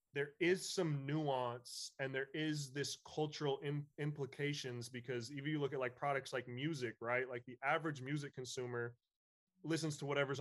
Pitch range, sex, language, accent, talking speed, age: 120-145 Hz, male, English, American, 165 wpm, 20-39